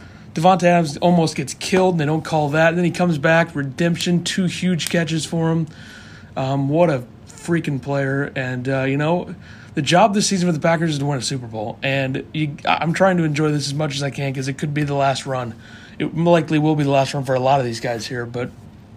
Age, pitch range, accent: 30-49, 135-170 Hz, American